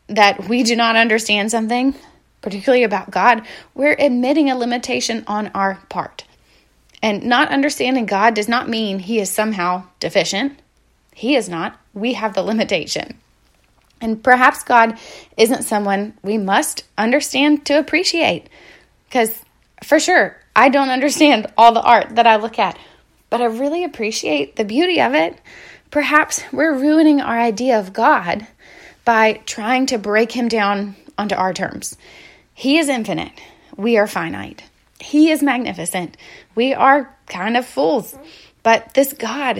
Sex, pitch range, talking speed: female, 205-265 Hz, 150 wpm